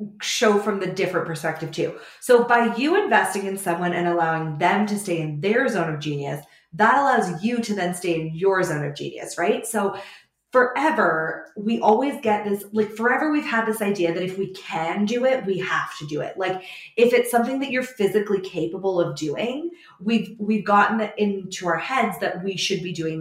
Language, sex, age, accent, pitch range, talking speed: English, female, 20-39, American, 175-220 Hz, 205 wpm